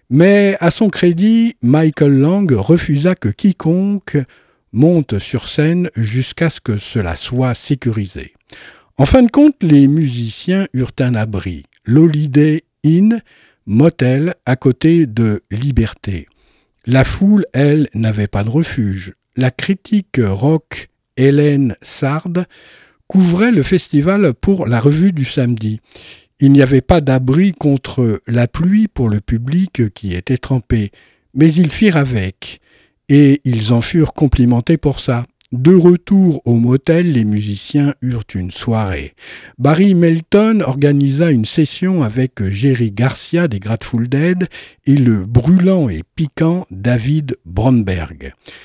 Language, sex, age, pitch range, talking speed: French, male, 60-79, 115-170 Hz, 130 wpm